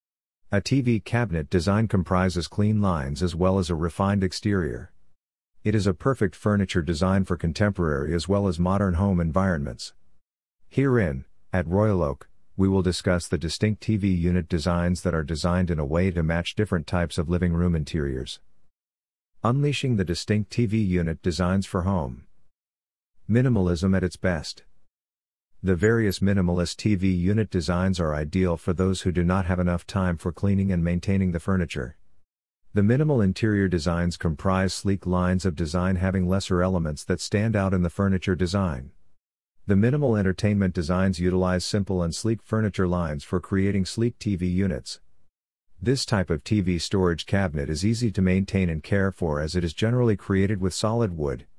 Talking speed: 165 wpm